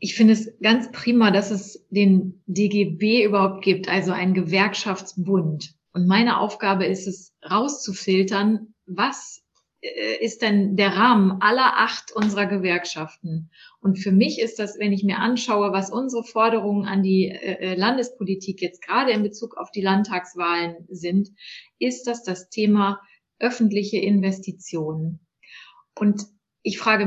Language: German